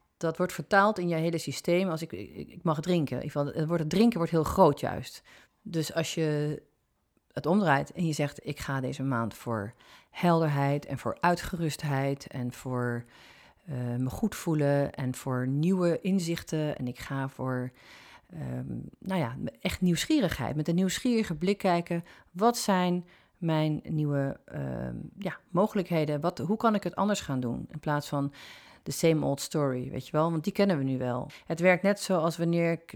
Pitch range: 135-170 Hz